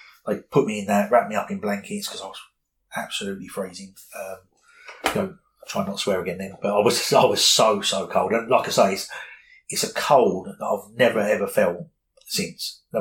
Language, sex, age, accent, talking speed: English, male, 30-49, British, 220 wpm